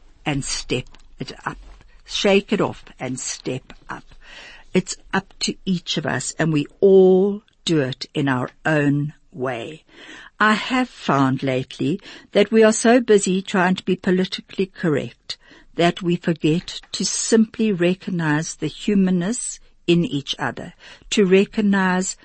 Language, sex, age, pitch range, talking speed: English, female, 60-79, 150-200 Hz, 140 wpm